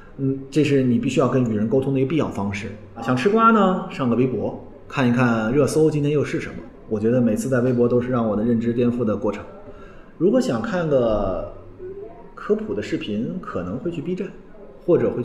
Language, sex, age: Chinese, male, 30-49